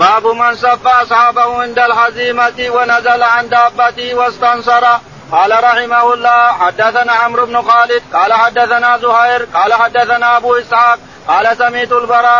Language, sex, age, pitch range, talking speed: Arabic, male, 40-59, 235-245 Hz, 130 wpm